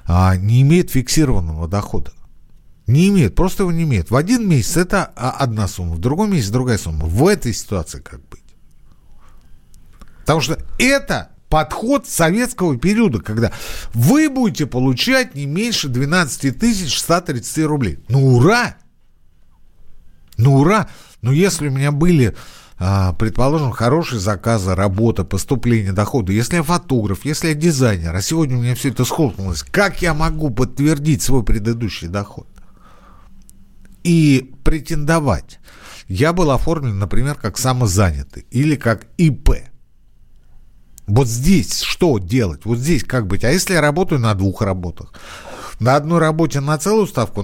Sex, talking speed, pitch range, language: male, 140 wpm, 95-160 Hz, Russian